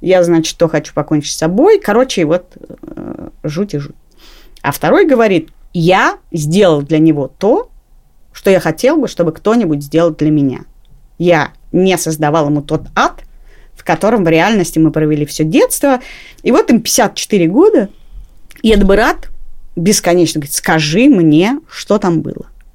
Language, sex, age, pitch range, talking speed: Russian, female, 30-49, 160-230 Hz, 155 wpm